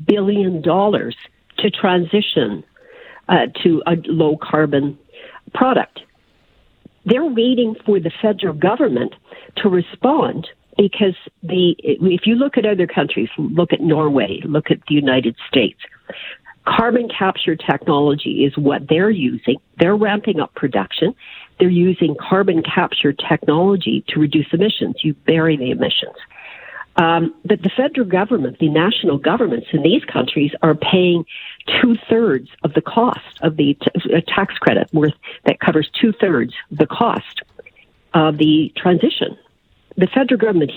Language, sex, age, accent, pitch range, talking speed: English, female, 50-69, American, 160-225 Hz, 135 wpm